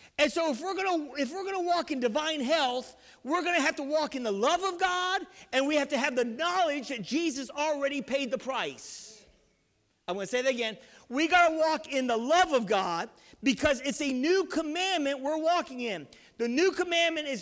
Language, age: English, 50-69